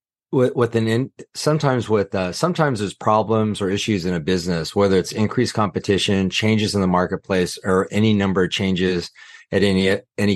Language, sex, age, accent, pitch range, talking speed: English, male, 30-49, American, 90-105 Hz, 190 wpm